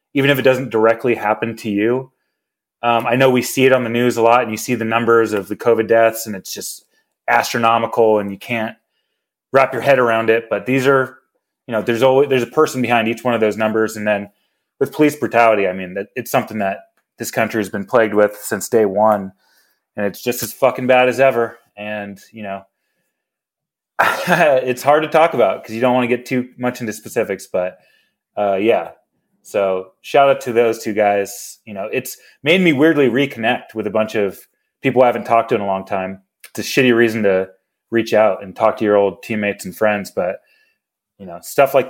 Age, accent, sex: 30-49, American, male